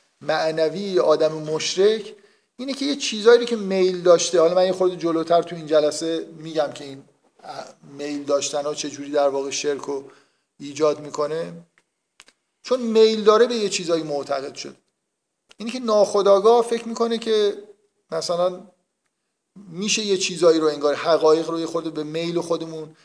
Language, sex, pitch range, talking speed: Persian, male, 155-190 Hz, 155 wpm